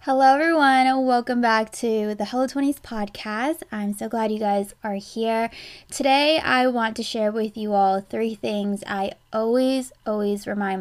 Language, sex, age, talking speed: English, female, 20-39, 160 wpm